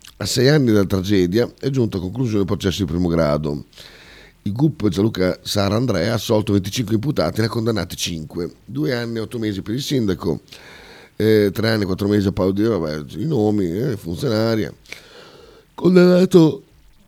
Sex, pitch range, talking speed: male, 90-115 Hz, 180 wpm